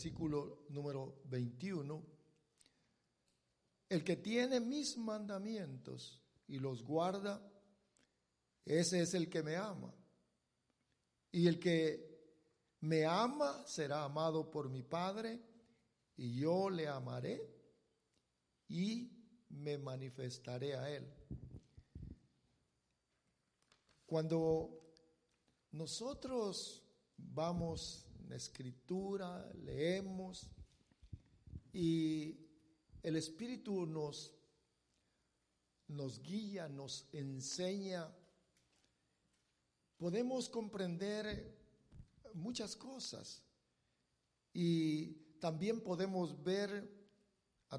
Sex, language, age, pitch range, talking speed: male, English, 50-69, 140-195 Hz, 75 wpm